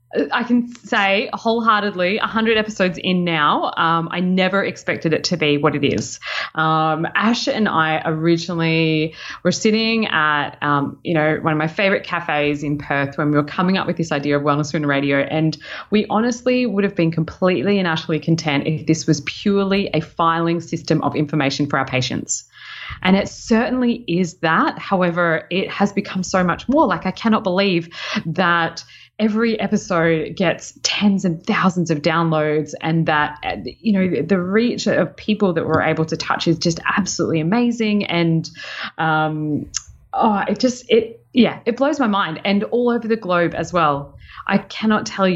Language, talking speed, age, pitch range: English, 175 wpm, 20-39, 155-200 Hz